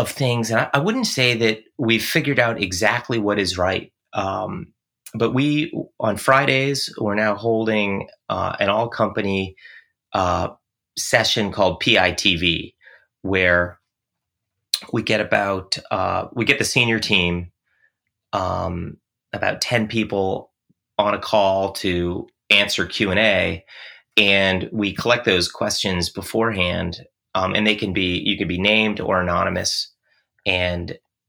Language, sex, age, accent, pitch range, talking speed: English, male, 30-49, American, 95-120 Hz, 130 wpm